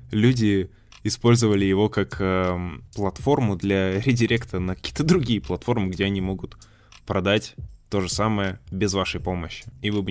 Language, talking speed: Russian, 150 wpm